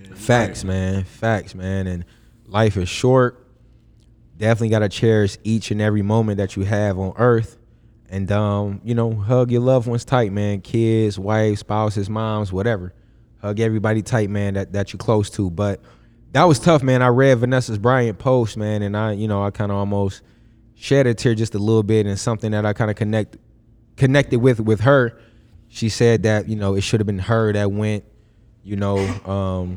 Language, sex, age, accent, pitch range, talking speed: English, male, 20-39, American, 100-115 Hz, 195 wpm